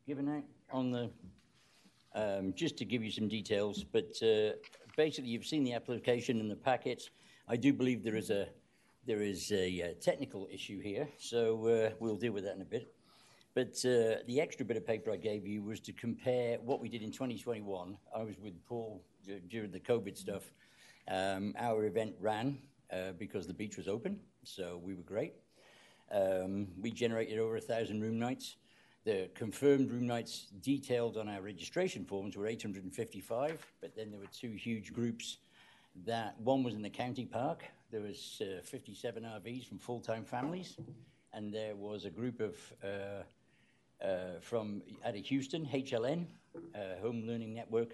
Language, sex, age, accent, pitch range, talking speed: English, male, 60-79, British, 100-125 Hz, 180 wpm